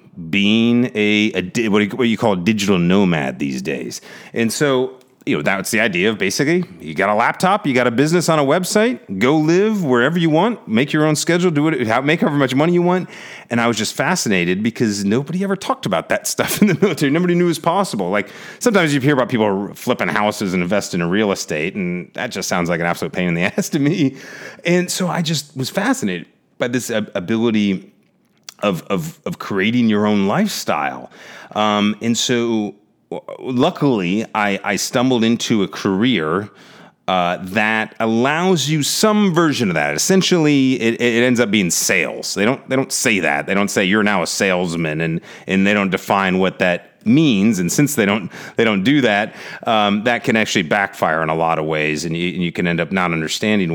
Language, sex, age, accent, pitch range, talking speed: English, male, 30-49, American, 100-165 Hz, 205 wpm